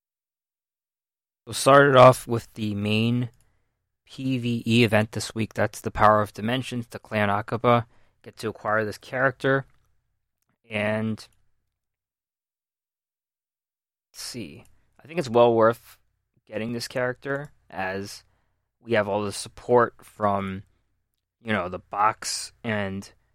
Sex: male